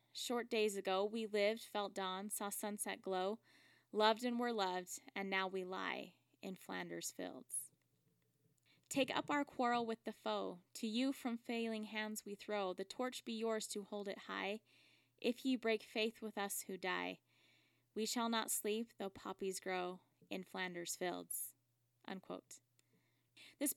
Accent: American